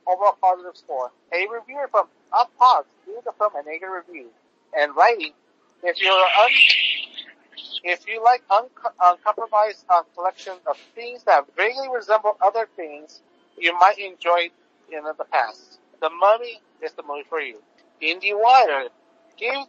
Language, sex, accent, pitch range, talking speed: English, male, American, 155-225 Hz, 160 wpm